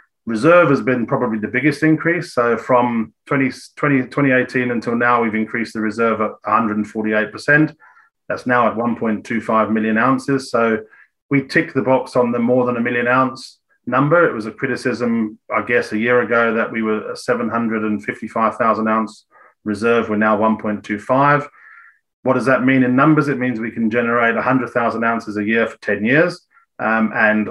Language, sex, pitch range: English, male, 110-135 Hz